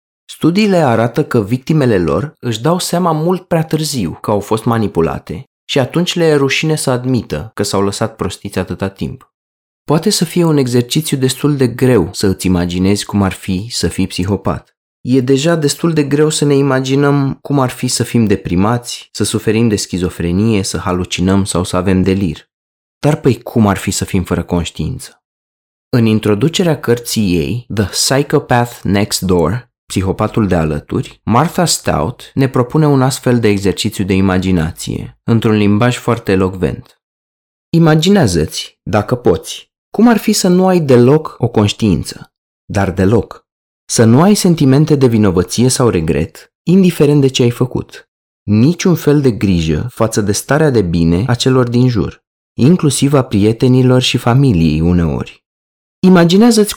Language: Romanian